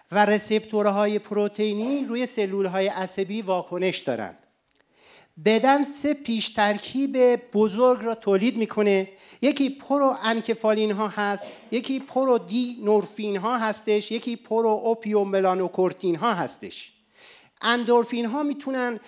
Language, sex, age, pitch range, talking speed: Persian, male, 50-69, 205-245 Hz, 105 wpm